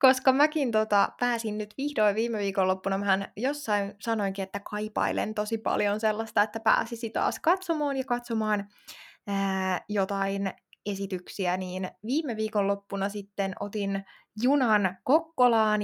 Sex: female